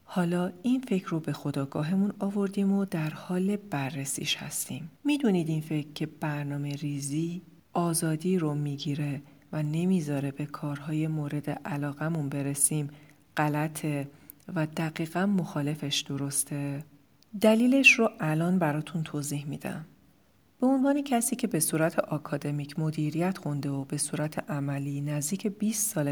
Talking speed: 125 wpm